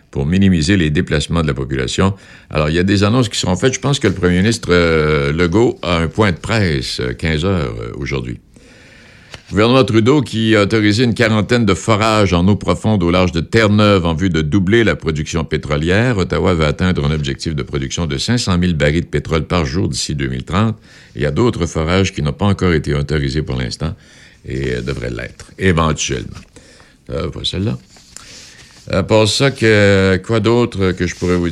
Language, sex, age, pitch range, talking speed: French, male, 60-79, 75-105 Hz, 200 wpm